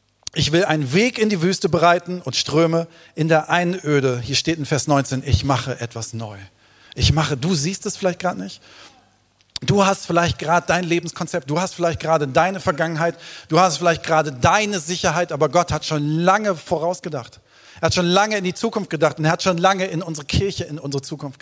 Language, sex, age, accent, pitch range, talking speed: German, male, 40-59, German, 140-175 Hz, 205 wpm